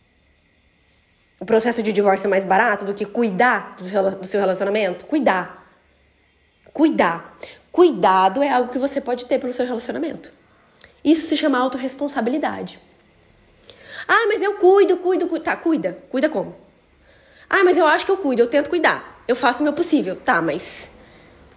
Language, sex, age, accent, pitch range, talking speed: Portuguese, female, 20-39, Brazilian, 210-290 Hz, 160 wpm